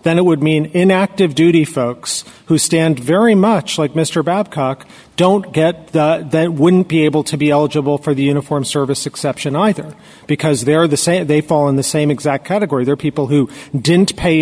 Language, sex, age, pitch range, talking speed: English, male, 40-59, 145-175 Hz, 190 wpm